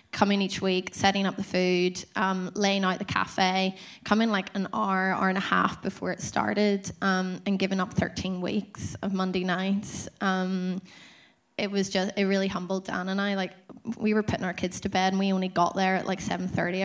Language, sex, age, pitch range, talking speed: English, female, 20-39, 185-205 Hz, 205 wpm